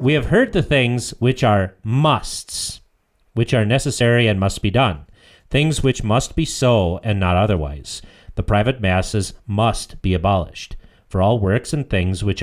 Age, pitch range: 40-59, 95-125 Hz